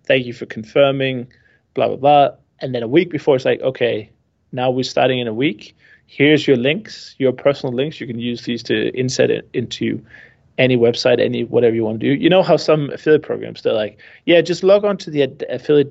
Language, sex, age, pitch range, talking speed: English, male, 30-49, 120-145 Hz, 225 wpm